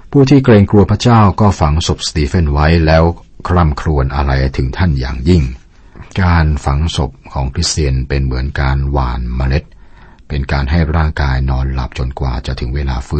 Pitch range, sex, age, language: 70-85 Hz, male, 60-79, Thai